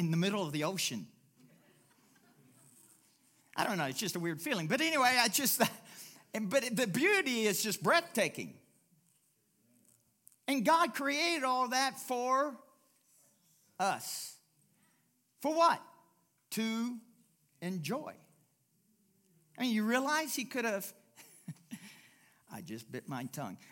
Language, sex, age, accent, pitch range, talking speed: English, male, 50-69, American, 145-235 Hz, 120 wpm